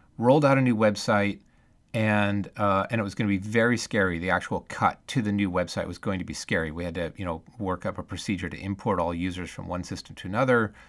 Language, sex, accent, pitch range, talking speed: English, male, American, 85-110 Hz, 250 wpm